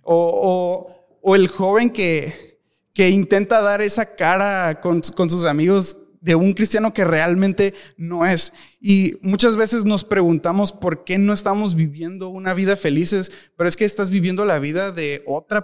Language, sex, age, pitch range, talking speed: Spanish, male, 20-39, 165-210 Hz, 170 wpm